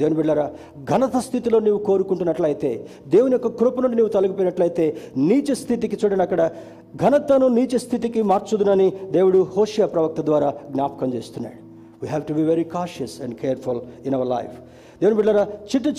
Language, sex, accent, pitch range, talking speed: Telugu, male, native, 160-225 Hz, 145 wpm